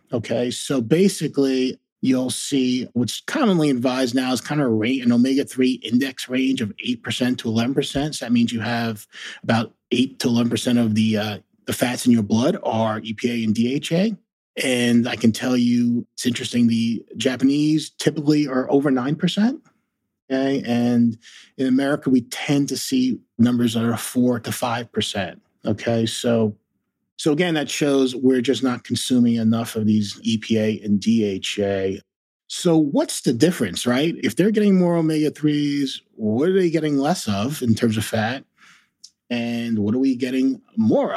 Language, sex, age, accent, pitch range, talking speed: English, male, 30-49, American, 115-145 Hz, 170 wpm